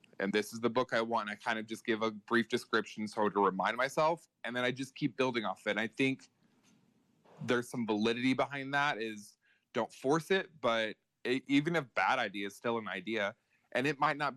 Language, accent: English, American